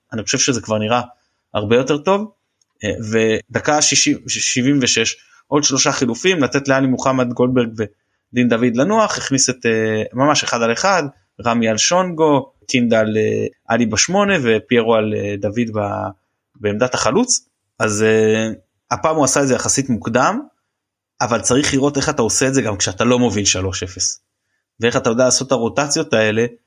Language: Hebrew